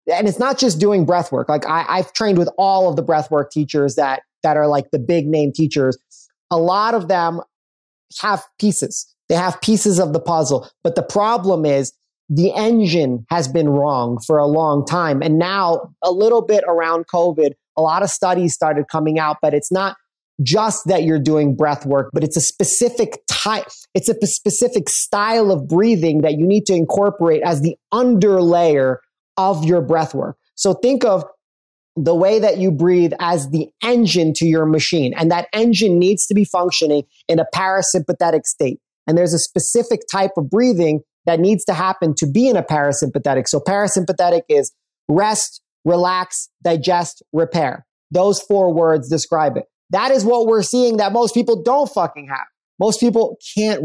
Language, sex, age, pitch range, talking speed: English, male, 30-49, 155-200 Hz, 180 wpm